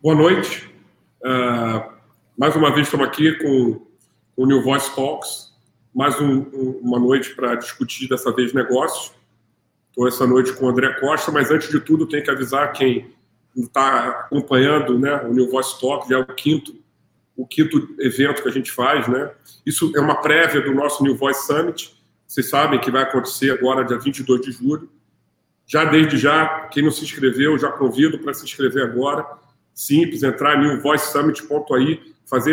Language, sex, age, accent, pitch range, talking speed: Portuguese, male, 40-59, Brazilian, 130-160 Hz, 175 wpm